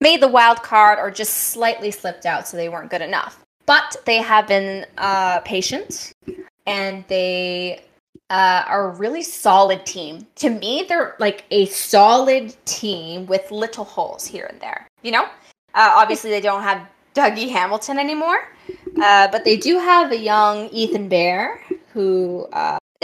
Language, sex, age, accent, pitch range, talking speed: English, female, 10-29, American, 180-230 Hz, 160 wpm